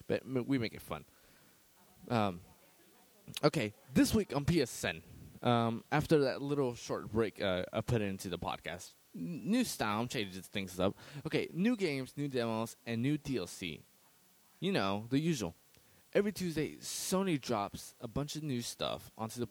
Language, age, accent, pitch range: English, 20-39, American, 110-150 Hz